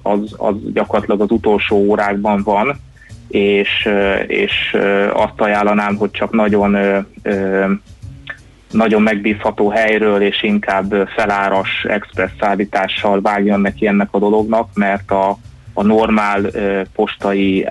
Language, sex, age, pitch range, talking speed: Hungarian, male, 20-39, 95-105 Hz, 110 wpm